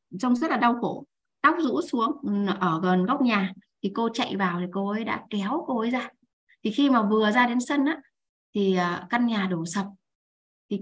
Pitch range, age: 195-255 Hz, 20-39